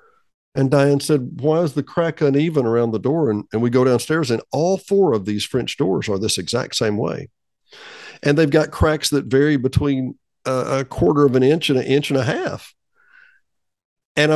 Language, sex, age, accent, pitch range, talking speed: English, male, 50-69, American, 110-155 Hz, 200 wpm